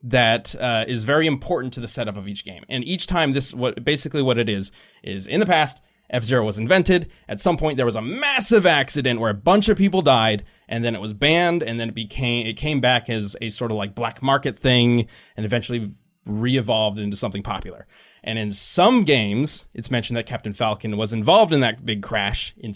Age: 20-39